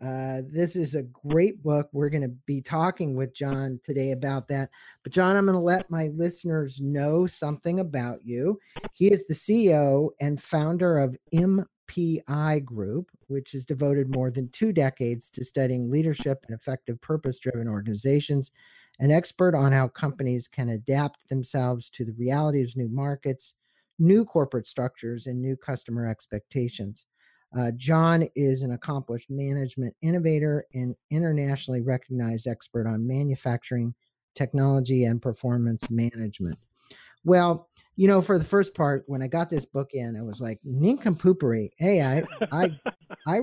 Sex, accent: male, American